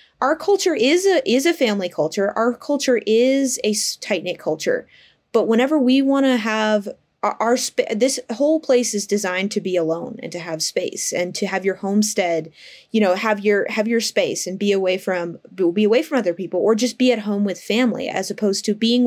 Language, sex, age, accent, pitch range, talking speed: English, female, 20-39, American, 190-245 Hz, 215 wpm